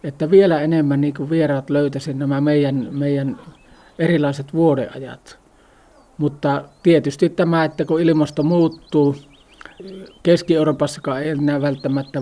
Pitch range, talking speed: 140-155 Hz, 105 wpm